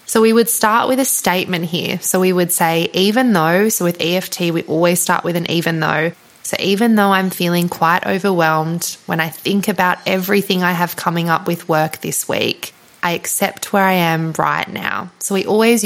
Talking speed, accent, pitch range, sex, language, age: 205 wpm, Australian, 165-200 Hz, female, English, 20-39